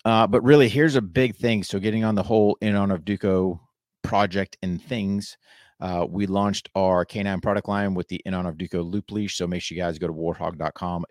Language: English